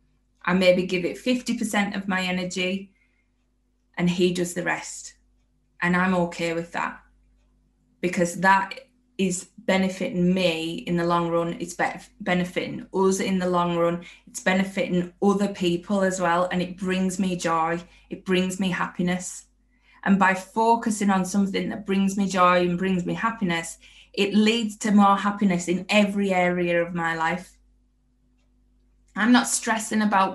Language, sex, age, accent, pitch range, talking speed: English, female, 20-39, British, 175-200 Hz, 150 wpm